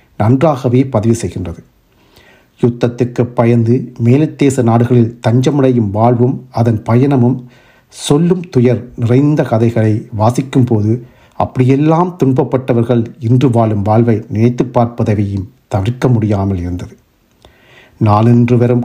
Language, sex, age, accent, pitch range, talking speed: Tamil, male, 50-69, native, 110-130 Hz, 85 wpm